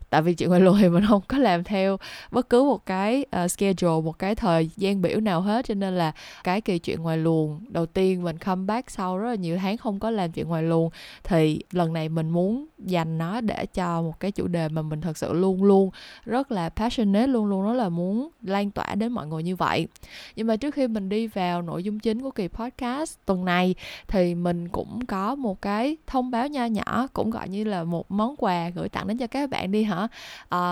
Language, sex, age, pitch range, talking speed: Vietnamese, female, 20-39, 170-225 Hz, 235 wpm